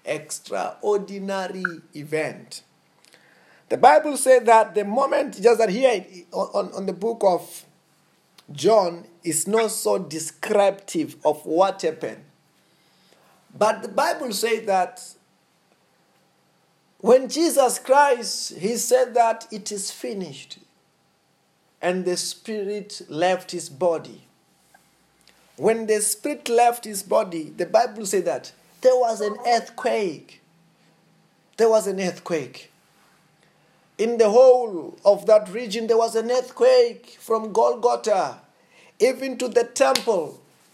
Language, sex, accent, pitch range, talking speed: English, male, South African, 185-255 Hz, 115 wpm